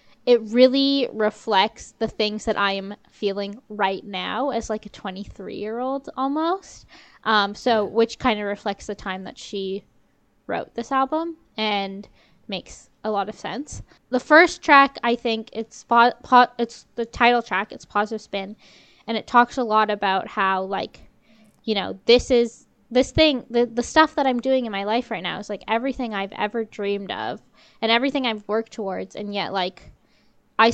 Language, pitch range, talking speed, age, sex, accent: English, 200-240 Hz, 175 wpm, 10-29, female, American